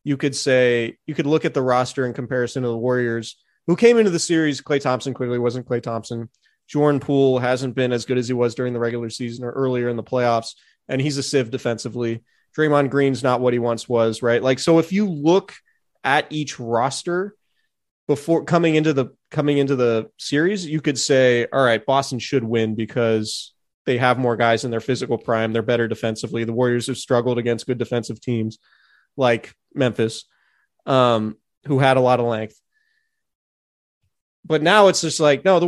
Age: 30-49